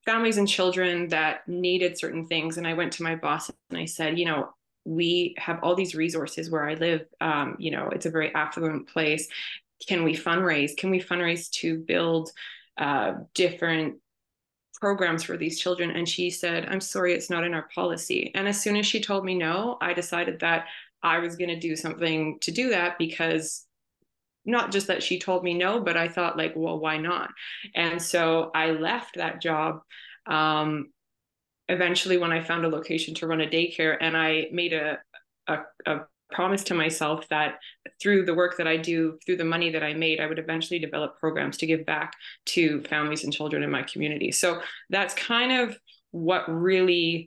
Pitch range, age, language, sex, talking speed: 160-180 Hz, 20-39, English, female, 195 wpm